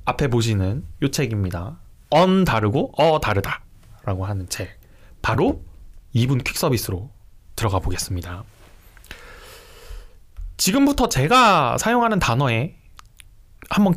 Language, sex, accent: Korean, male, native